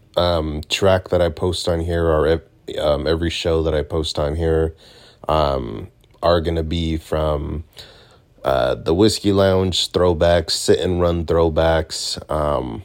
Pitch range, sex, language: 80-100 Hz, male, English